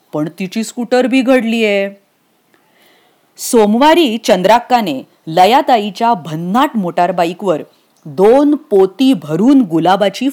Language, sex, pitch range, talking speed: English, female, 185-265 Hz, 80 wpm